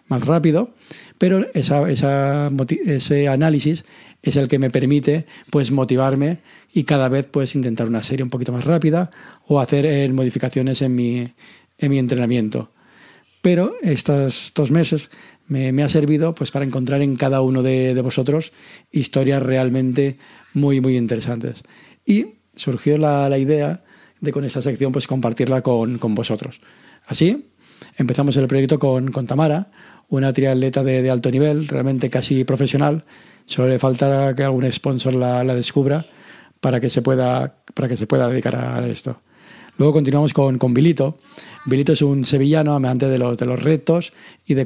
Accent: Spanish